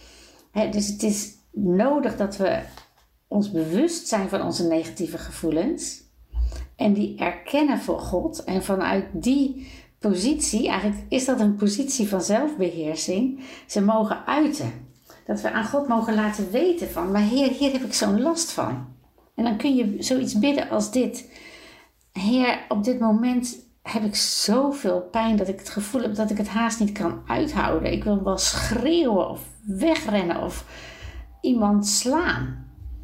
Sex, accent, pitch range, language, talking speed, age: female, Dutch, 190-255 Hz, Dutch, 155 wpm, 60-79